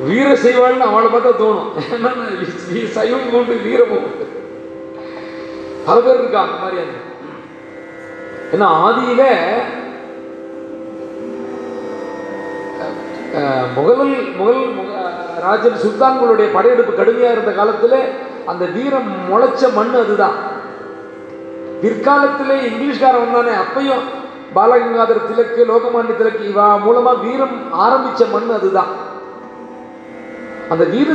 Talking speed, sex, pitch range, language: 60 wpm, male, 205-275 Hz, Tamil